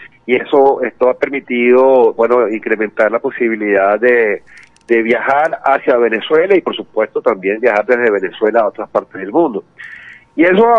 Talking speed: 160 wpm